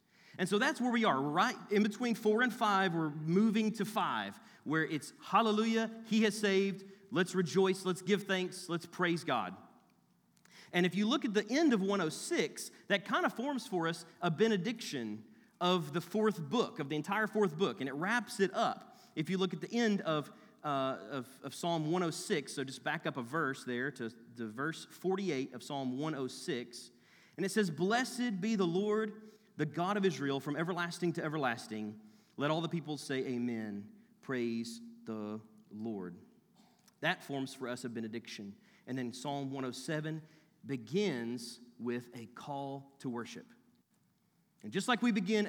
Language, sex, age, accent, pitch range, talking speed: English, male, 40-59, American, 145-215 Hz, 170 wpm